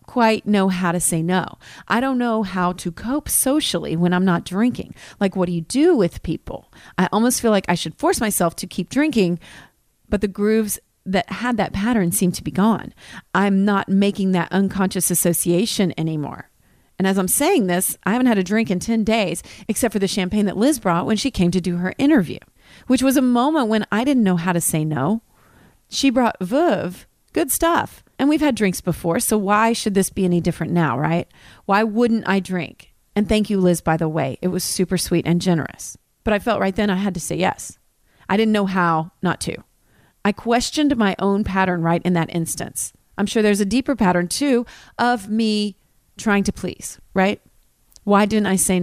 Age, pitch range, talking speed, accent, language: 40-59, 180-230 Hz, 210 wpm, American, English